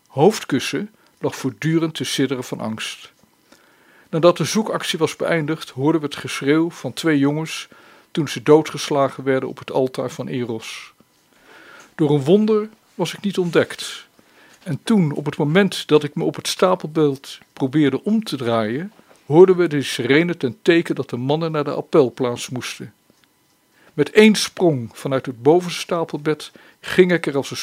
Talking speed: 160 wpm